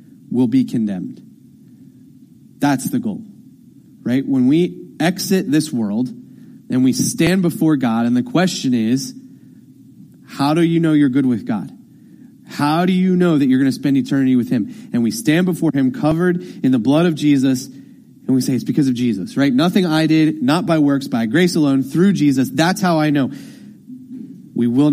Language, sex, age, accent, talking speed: English, male, 30-49, American, 185 wpm